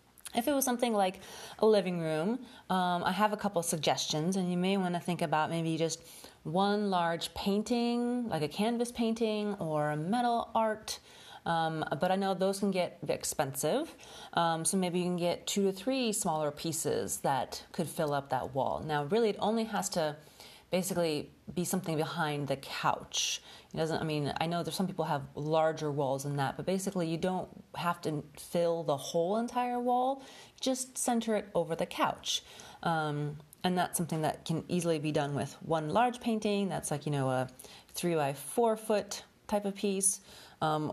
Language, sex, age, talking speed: English, female, 30-49, 190 wpm